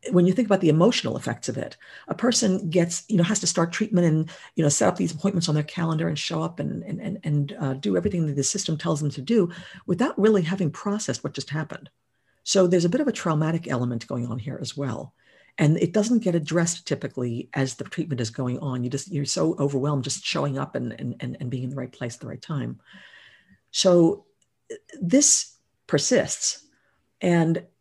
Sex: female